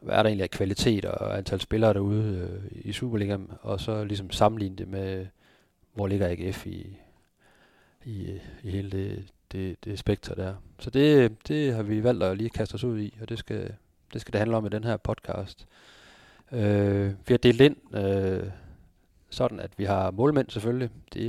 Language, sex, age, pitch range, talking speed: Danish, male, 40-59, 95-110 Hz, 195 wpm